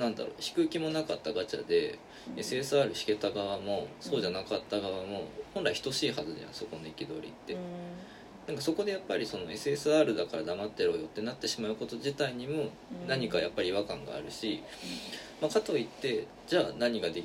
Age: 20-39